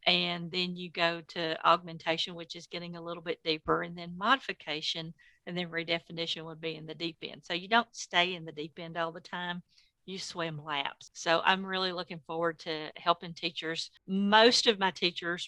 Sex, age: female, 50-69